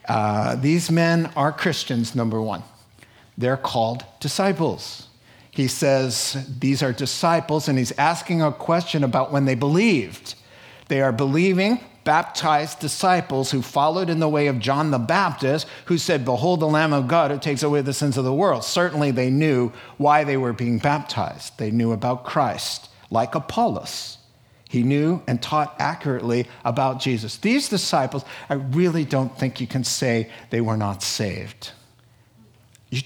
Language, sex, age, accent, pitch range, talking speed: English, male, 50-69, American, 120-155 Hz, 160 wpm